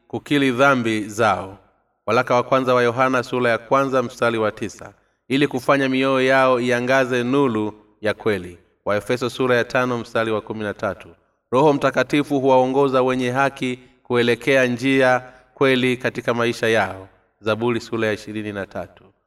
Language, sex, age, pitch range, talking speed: Swahili, male, 30-49, 110-130 Hz, 140 wpm